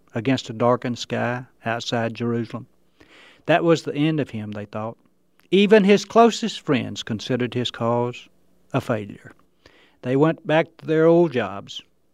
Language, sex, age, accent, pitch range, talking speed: English, male, 60-79, American, 120-175 Hz, 150 wpm